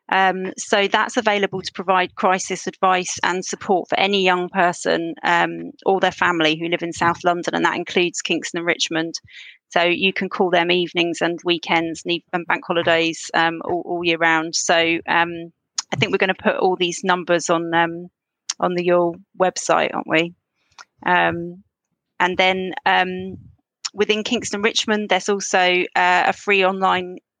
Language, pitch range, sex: English, 170-195 Hz, female